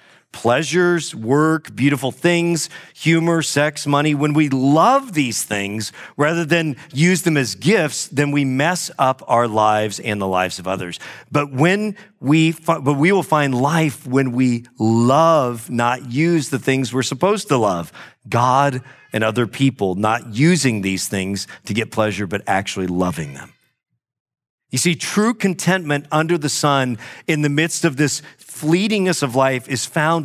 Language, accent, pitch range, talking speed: English, American, 120-165 Hz, 160 wpm